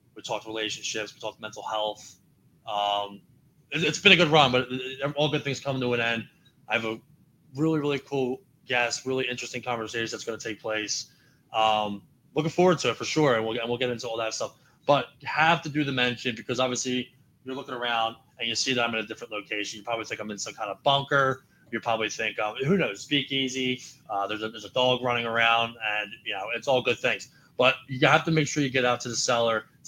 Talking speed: 240 wpm